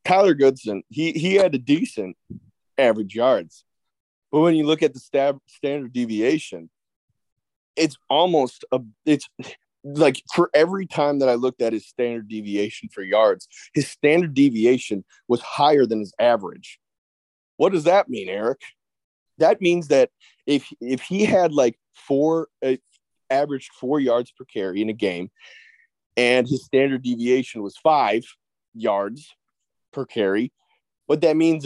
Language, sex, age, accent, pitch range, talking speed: English, male, 30-49, American, 120-165 Hz, 150 wpm